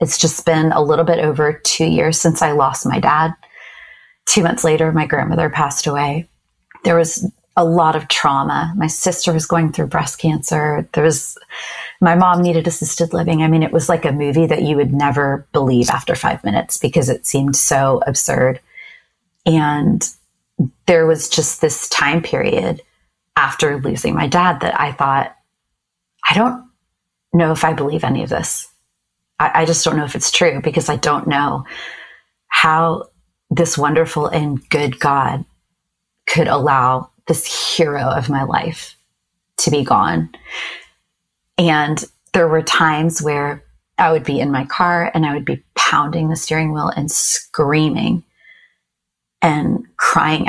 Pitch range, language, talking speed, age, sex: 150-170 Hz, English, 155 wpm, 30-49, female